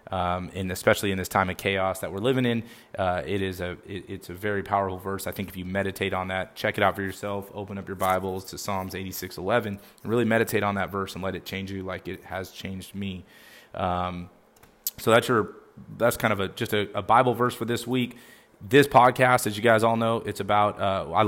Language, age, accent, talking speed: English, 20-39, American, 235 wpm